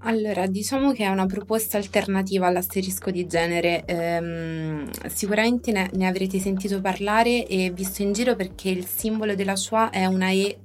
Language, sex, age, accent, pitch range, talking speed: Italian, female, 20-39, native, 185-215 Hz, 165 wpm